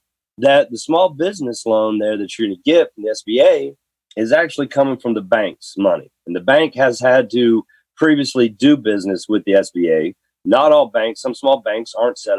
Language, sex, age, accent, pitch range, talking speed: English, male, 40-59, American, 115-180 Hz, 200 wpm